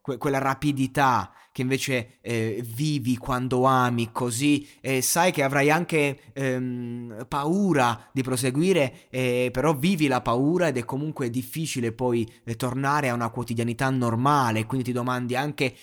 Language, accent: Italian, native